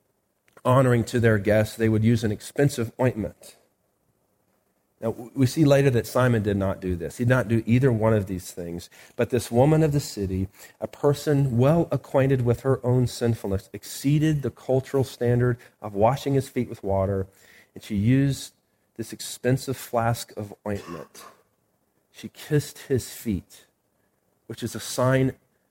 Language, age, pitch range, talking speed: English, 40-59, 105-145 Hz, 160 wpm